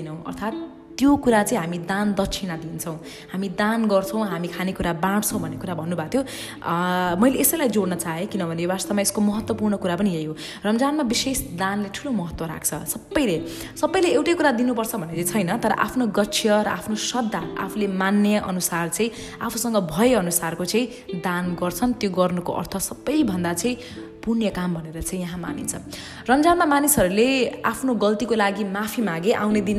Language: English